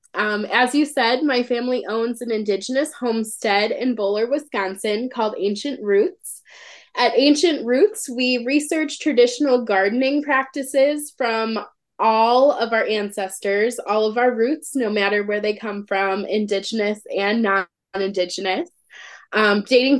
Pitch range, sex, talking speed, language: 205-255 Hz, female, 130 wpm, English